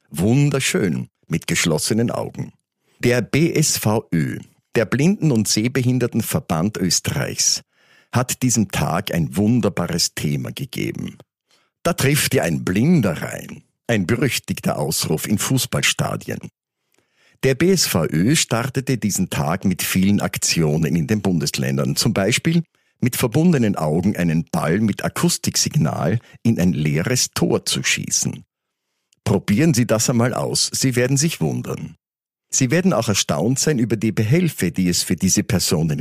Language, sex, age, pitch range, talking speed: German, male, 50-69, 95-135 Hz, 130 wpm